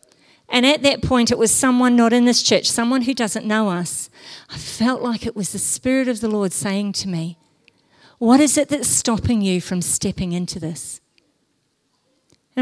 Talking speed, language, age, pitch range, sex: 190 wpm, English, 50-69, 185-245 Hz, female